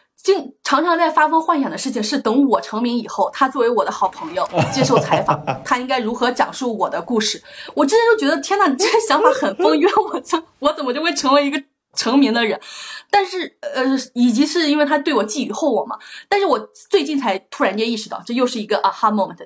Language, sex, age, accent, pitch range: Chinese, female, 20-39, native, 215-295 Hz